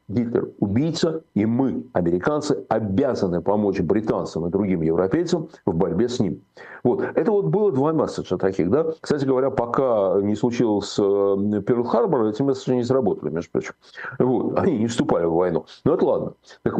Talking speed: 165 wpm